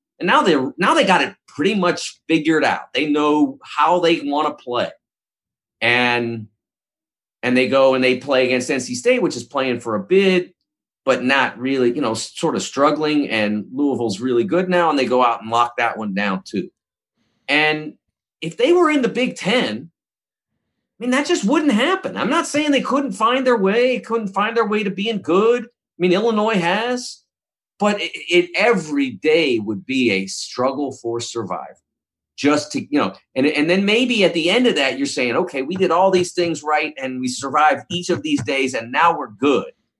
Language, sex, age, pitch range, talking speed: English, male, 40-59, 120-200 Hz, 200 wpm